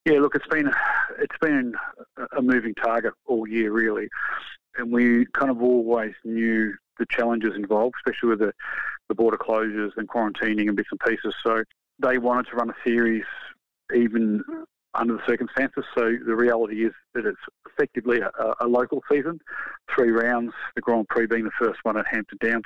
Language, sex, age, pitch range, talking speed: English, male, 40-59, 110-120 Hz, 175 wpm